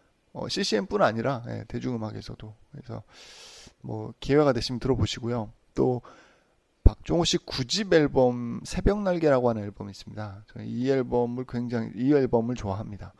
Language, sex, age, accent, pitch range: Korean, male, 20-39, native, 110-145 Hz